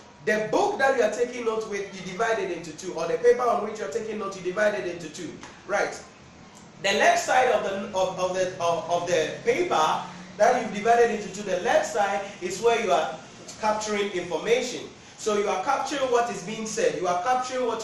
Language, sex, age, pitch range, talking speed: English, male, 30-49, 195-270 Hz, 215 wpm